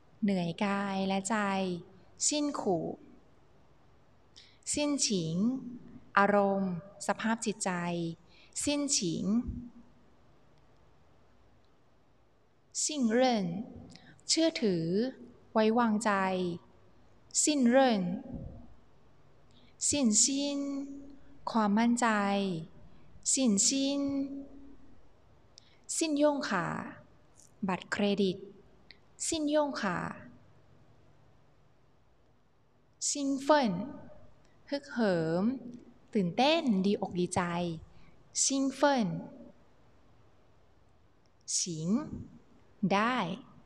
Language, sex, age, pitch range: Thai, female, 20-39, 165-250 Hz